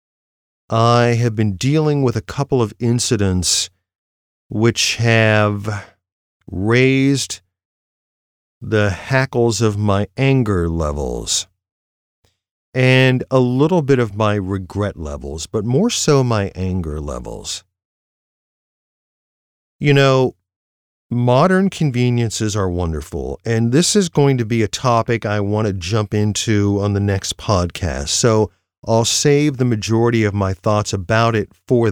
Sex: male